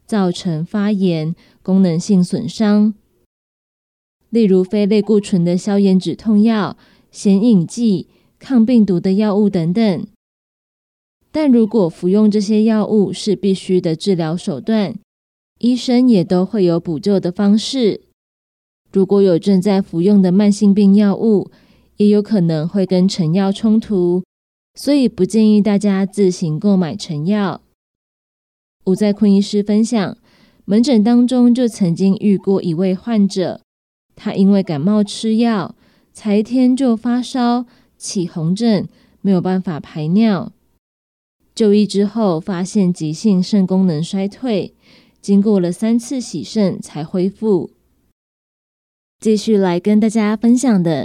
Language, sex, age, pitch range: Chinese, female, 20-39, 185-220 Hz